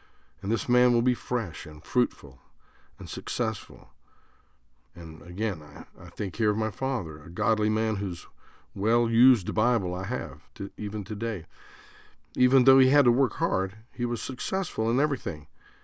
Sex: male